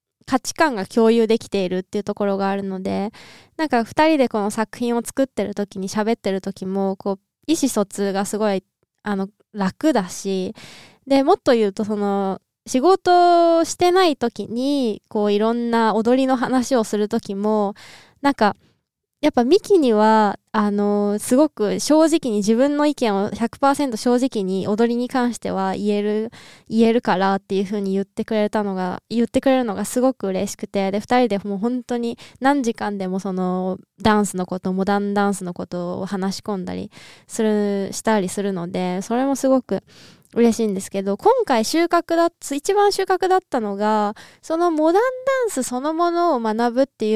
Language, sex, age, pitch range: Japanese, female, 20-39, 200-260 Hz